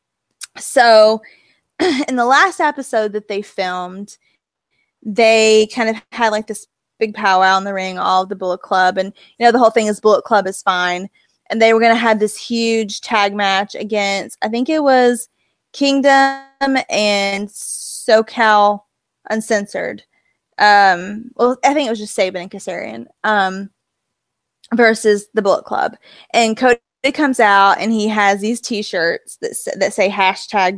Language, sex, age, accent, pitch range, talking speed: English, female, 20-39, American, 200-245 Hz, 160 wpm